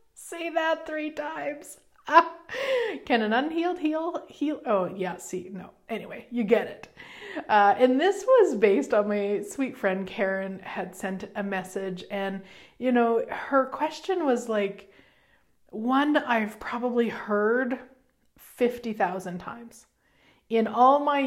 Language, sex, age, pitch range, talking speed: English, female, 30-49, 205-295 Hz, 135 wpm